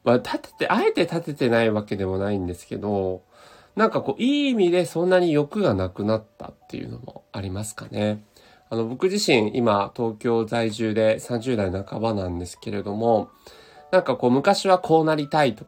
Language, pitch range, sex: Japanese, 100-150 Hz, male